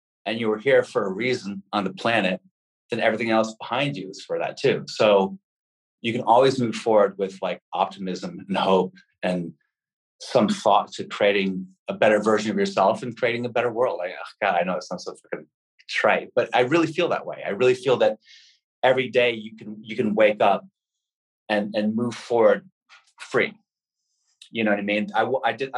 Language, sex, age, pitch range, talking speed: English, male, 30-49, 100-135 Hz, 205 wpm